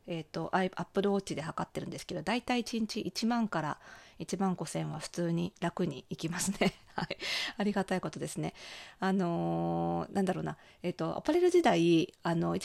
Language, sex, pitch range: Japanese, female, 165-245 Hz